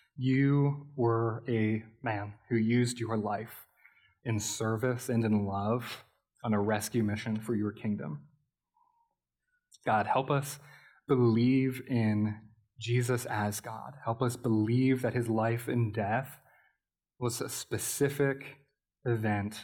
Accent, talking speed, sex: American, 120 wpm, male